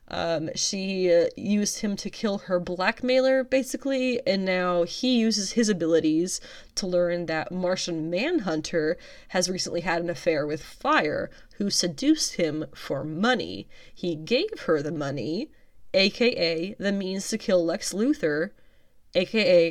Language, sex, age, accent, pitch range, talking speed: English, female, 20-39, American, 170-230 Hz, 140 wpm